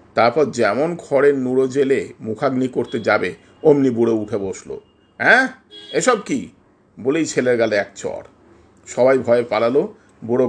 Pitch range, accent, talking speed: 120-175 Hz, native, 95 wpm